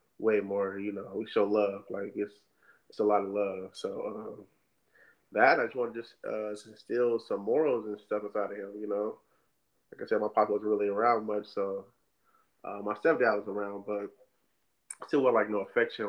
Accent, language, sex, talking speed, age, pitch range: American, English, male, 200 wpm, 20-39, 100-110 Hz